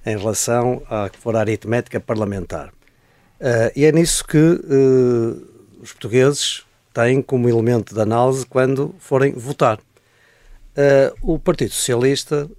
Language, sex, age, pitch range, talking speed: Portuguese, male, 50-69, 110-150 Hz, 120 wpm